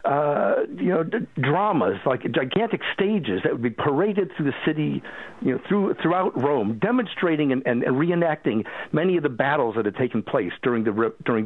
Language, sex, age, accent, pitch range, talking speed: English, male, 60-79, American, 130-185 Hz, 190 wpm